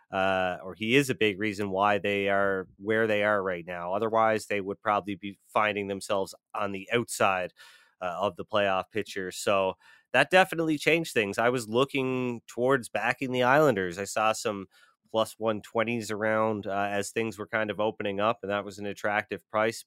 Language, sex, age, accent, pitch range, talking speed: English, male, 30-49, American, 100-115 Hz, 185 wpm